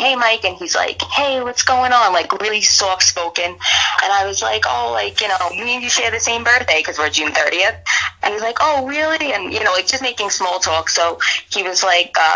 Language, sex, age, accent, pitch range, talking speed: English, female, 20-39, American, 160-220 Hz, 250 wpm